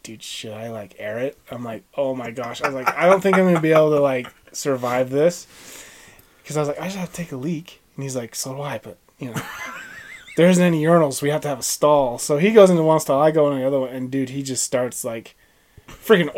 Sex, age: male, 20-39